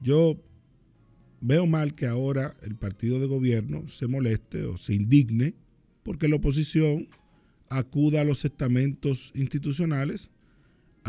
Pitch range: 110-140 Hz